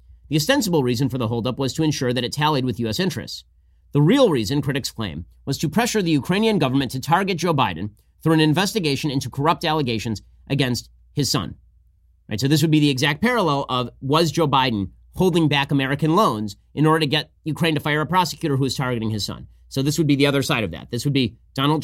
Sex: male